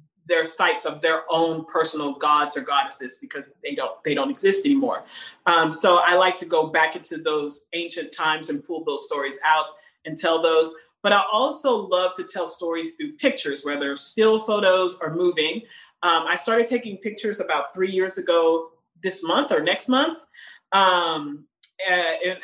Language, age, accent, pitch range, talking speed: Dutch, 40-59, American, 165-235 Hz, 170 wpm